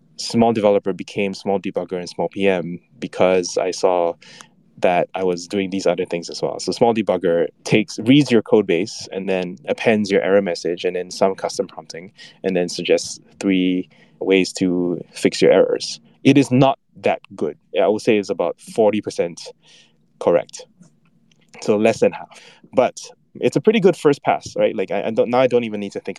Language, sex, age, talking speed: English, male, 20-39, 190 wpm